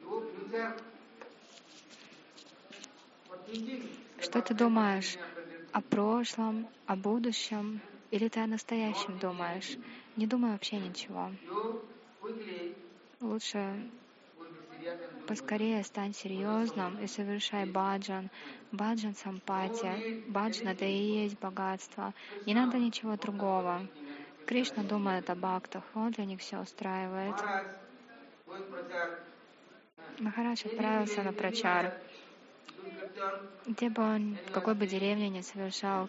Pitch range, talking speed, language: 190-225 Hz, 95 wpm, Russian